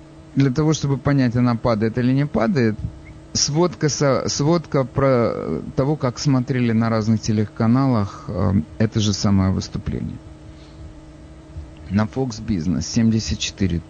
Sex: male